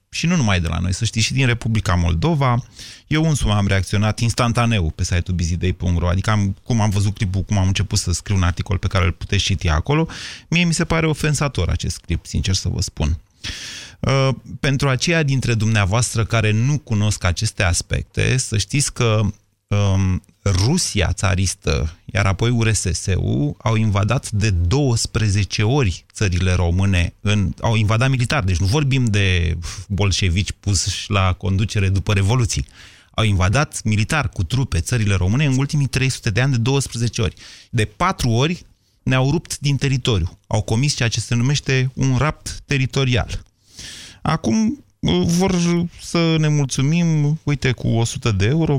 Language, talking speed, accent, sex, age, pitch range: Romanian, 155 wpm, native, male, 30-49, 100-130 Hz